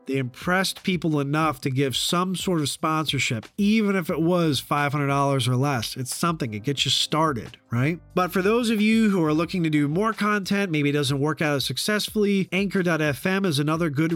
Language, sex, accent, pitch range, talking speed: English, male, American, 140-175 Hz, 200 wpm